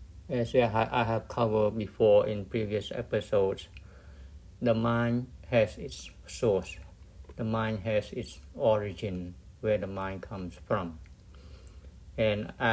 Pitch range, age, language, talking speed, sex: 85-110 Hz, 60-79, English, 115 wpm, male